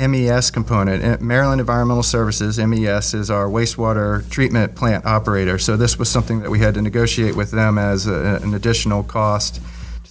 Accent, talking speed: American, 180 wpm